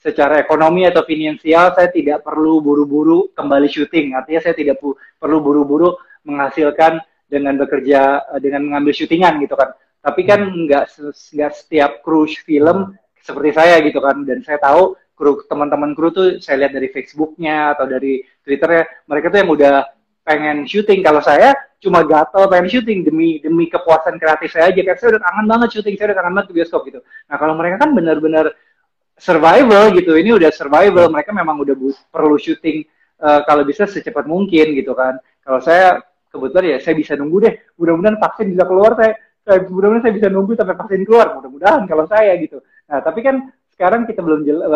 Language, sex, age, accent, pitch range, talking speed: Indonesian, male, 20-39, native, 145-185 Hz, 175 wpm